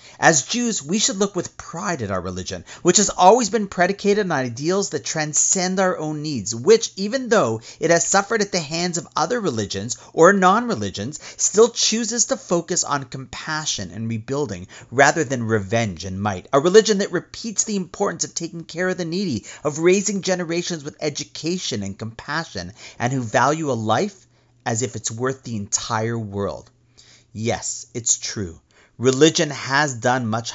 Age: 40-59